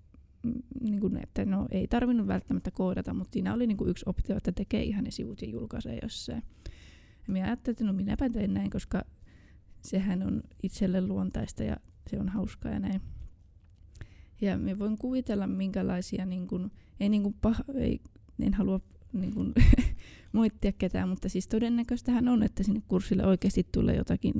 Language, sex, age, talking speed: Finnish, female, 20-39, 155 wpm